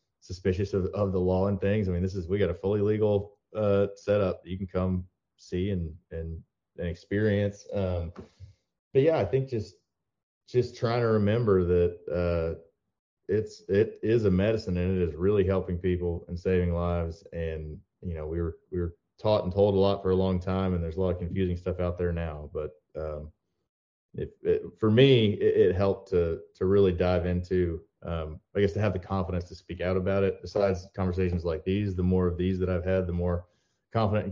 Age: 30-49